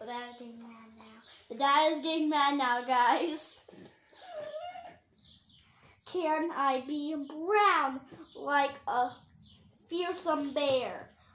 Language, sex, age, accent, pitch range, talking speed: English, female, 10-29, American, 280-350 Hz, 105 wpm